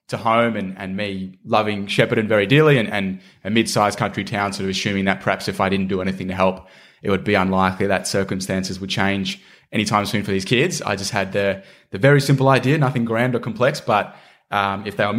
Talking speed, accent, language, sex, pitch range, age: 225 wpm, Australian, English, male, 100-115 Hz, 20-39